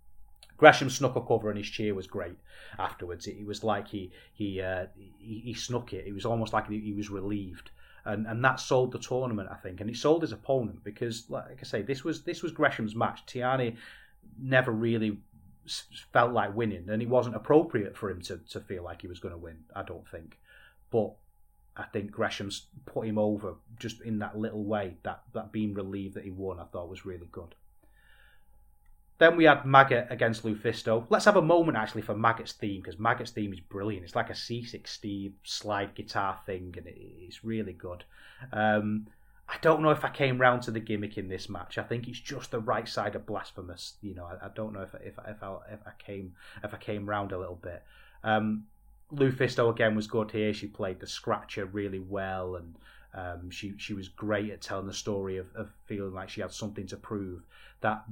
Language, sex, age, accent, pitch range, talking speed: English, male, 30-49, British, 95-115 Hz, 215 wpm